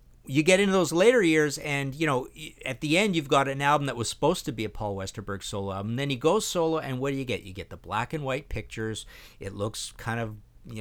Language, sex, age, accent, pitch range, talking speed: English, male, 50-69, American, 110-155 Hz, 260 wpm